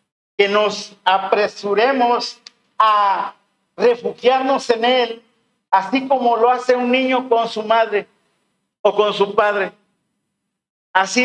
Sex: male